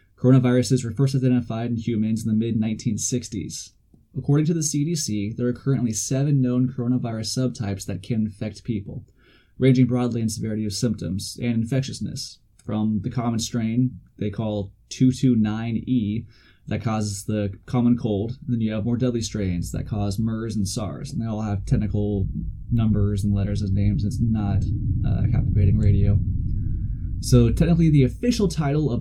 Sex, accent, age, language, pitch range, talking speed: male, American, 20-39, English, 105-125 Hz, 155 wpm